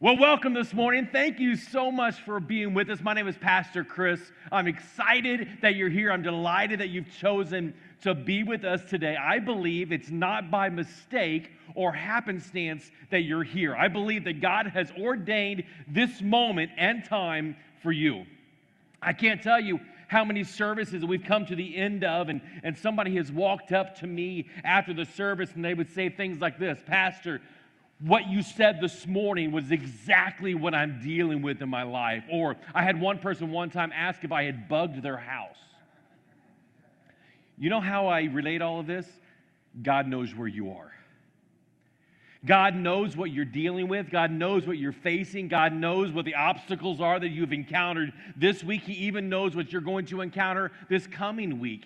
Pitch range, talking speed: 165-195 Hz, 185 wpm